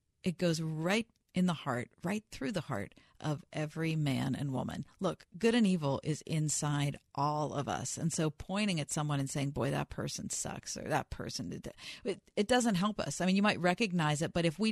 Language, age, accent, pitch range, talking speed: English, 40-59, American, 150-175 Hz, 215 wpm